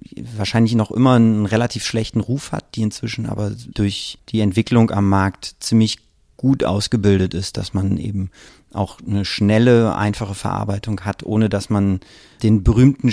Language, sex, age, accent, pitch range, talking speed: German, male, 30-49, German, 100-115 Hz, 155 wpm